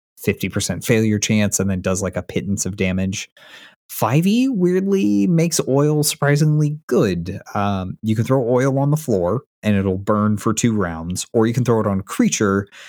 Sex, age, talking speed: male, 20-39, 180 wpm